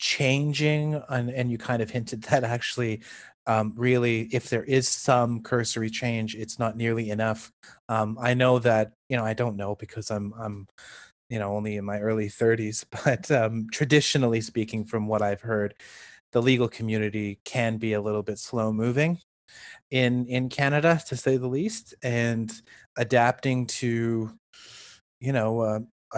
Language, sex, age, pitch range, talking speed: English, male, 30-49, 110-125 Hz, 165 wpm